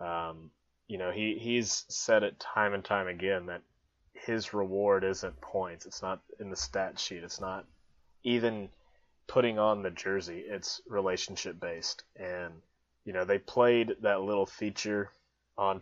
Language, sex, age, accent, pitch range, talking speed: English, male, 20-39, American, 90-100 Hz, 155 wpm